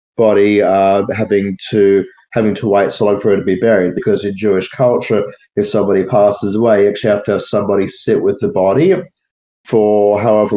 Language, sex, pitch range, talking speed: English, male, 100-110 Hz, 195 wpm